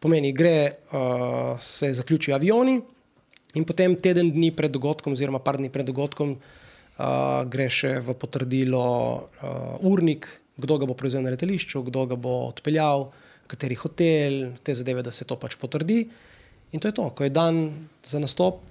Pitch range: 130-155 Hz